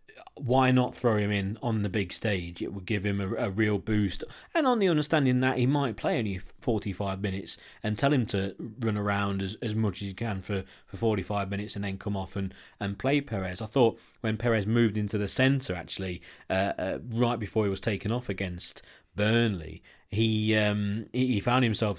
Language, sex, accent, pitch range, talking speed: English, male, British, 100-115 Hz, 205 wpm